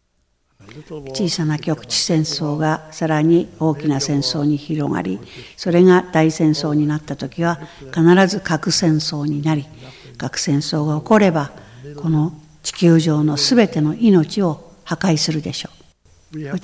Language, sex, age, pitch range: Japanese, female, 60-79, 145-175 Hz